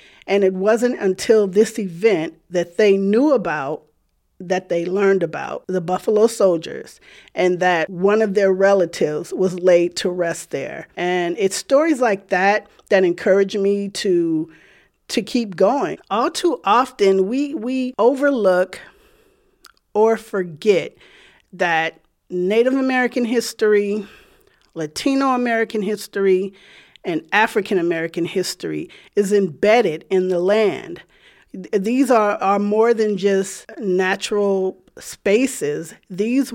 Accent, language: American, English